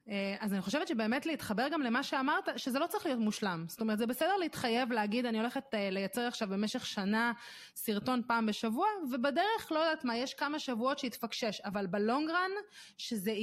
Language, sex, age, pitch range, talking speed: Hebrew, female, 30-49, 210-275 Hz, 175 wpm